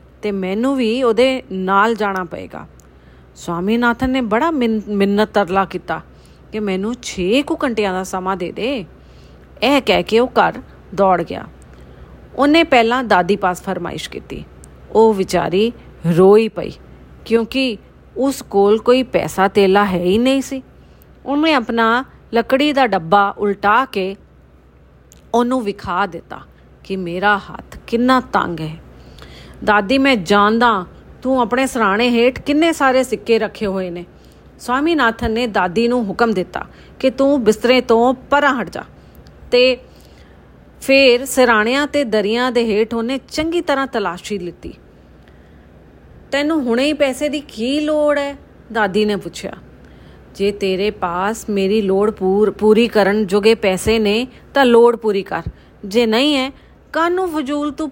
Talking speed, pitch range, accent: 110 wpm, 190-255 Hz, Indian